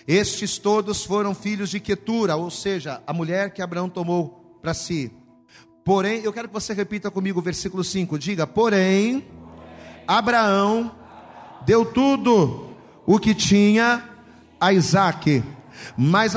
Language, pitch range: Portuguese, 150-205 Hz